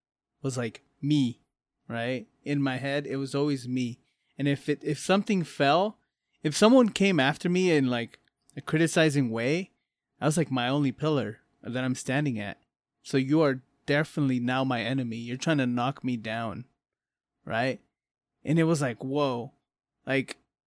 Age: 20-39